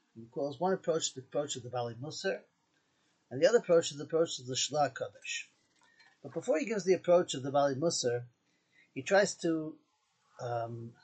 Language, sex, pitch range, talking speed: English, male, 135-195 Hz, 190 wpm